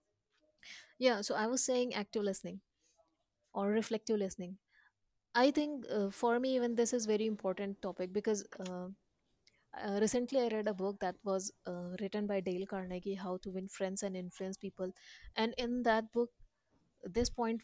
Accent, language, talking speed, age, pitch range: Indian, English, 165 wpm, 20-39, 185-220 Hz